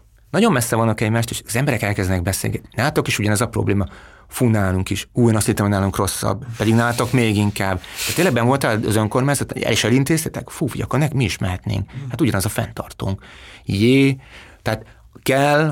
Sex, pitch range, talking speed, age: male, 100-125 Hz, 180 wpm, 30-49